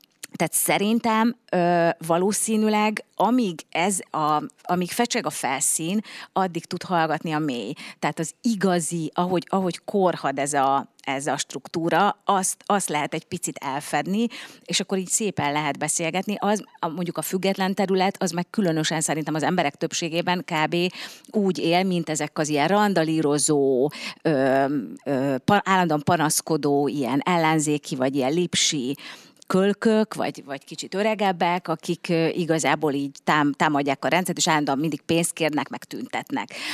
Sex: female